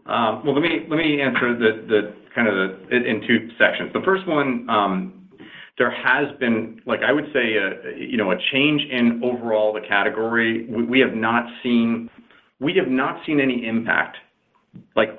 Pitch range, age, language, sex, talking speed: 105-130 Hz, 40-59, English, male, 185 wpm